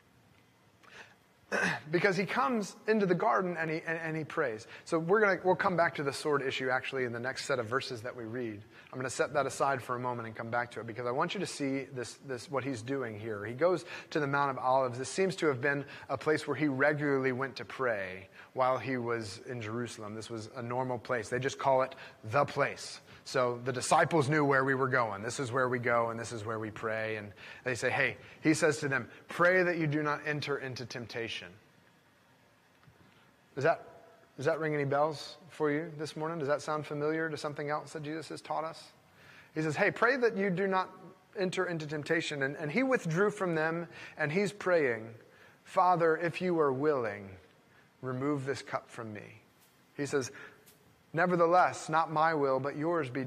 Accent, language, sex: American, English, male